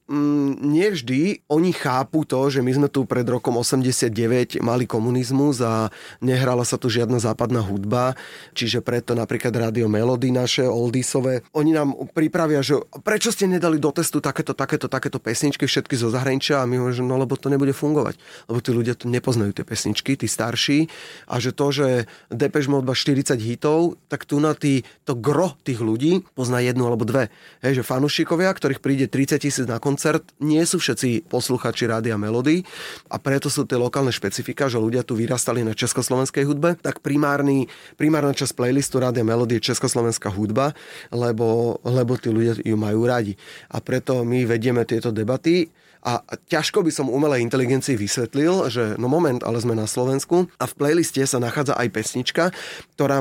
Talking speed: 170 wpm